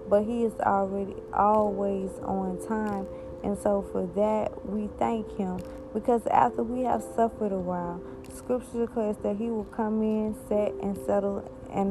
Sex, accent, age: female, American, 20-39